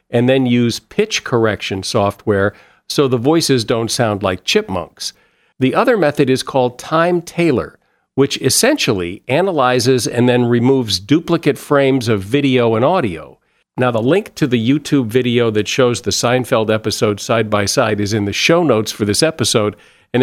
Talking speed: 155 wpm